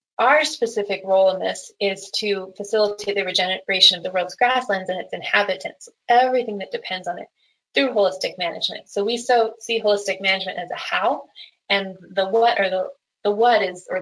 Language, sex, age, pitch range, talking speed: English, female, 20-39, 195-235 Hz, 185 wpm